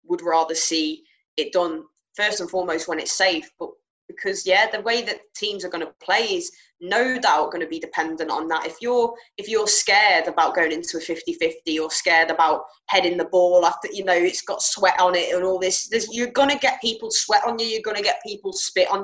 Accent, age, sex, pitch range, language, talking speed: British, 20-39, female, 165-220 Hz, English, 220 wpm